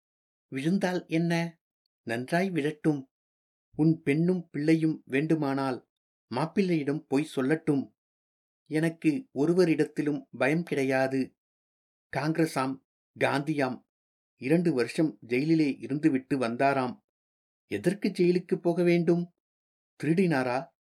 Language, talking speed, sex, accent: Tamil, 80 wpm, male, native